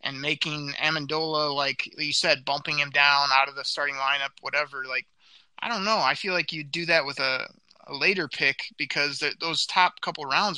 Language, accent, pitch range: English, American, 140-165 Hz